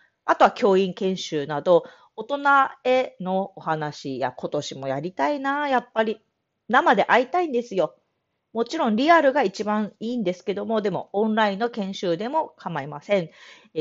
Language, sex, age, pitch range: Japanese, female, 40-59, 170-270 Hz